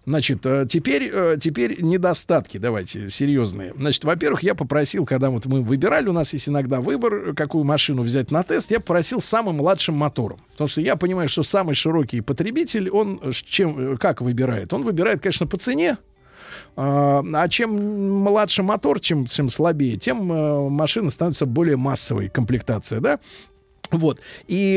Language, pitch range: Russian, 135-185 Hz